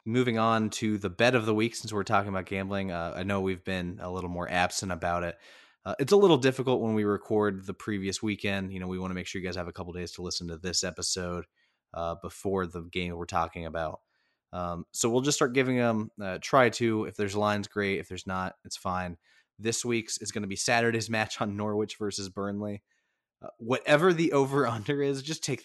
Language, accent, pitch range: English, American, 90-110 Hz